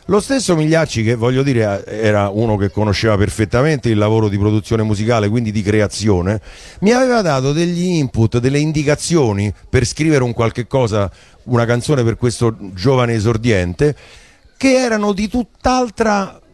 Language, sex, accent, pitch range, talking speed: Italian, male, native, 115-175 Hz, 150 wpm